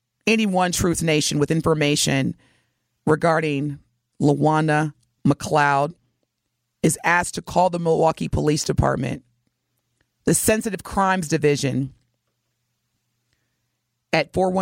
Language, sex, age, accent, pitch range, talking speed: English, female, 30-49, American, 125-160 Hz, 95 wpm